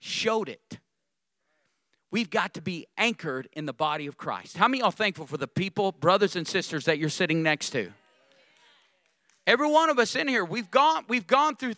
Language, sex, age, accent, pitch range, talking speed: English, male, 40-59, American, 170-230 Hz, 200 wpm